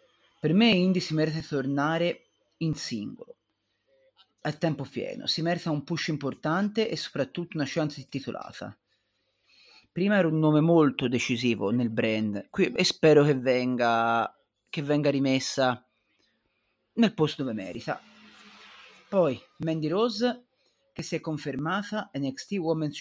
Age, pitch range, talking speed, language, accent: 30-49, 140-185 Hz, 135 wpm, Italian, native